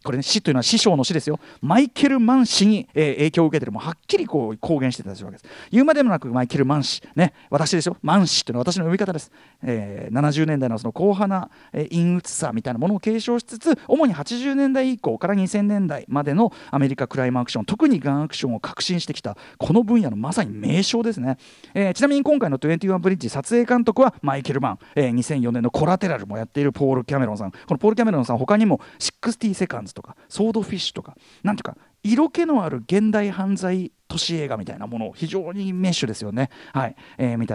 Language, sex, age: Japanese, male, 40-59